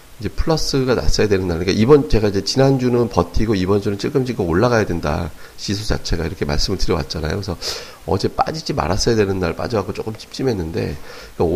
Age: 30-49